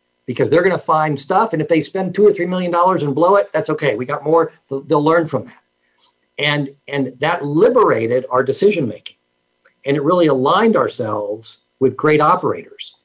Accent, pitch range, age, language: American, 135-170 Hz, 50-69, English